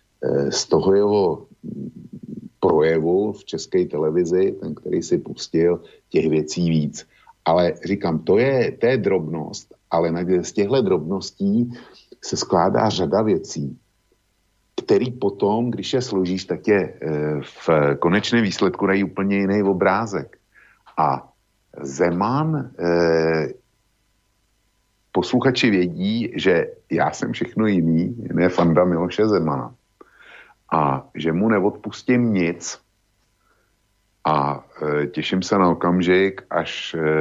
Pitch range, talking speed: 80-105 Hz, 110 wpm